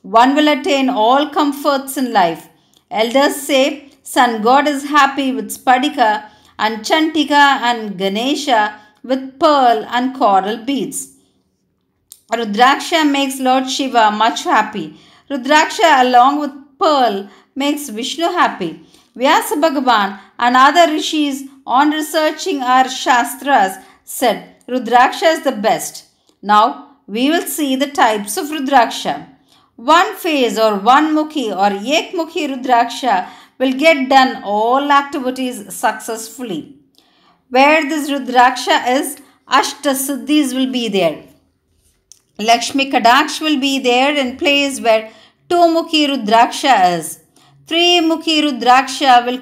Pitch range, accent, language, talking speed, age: 230-290 Hz, native, Tamil, 120 wpm, 50-69